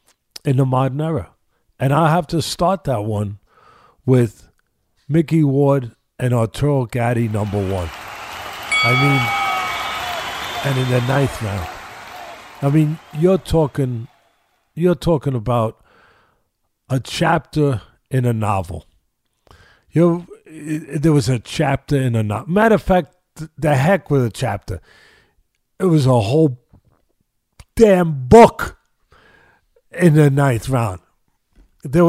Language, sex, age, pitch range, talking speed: English, male, 50-69, 120-195 Hz, 125 wpm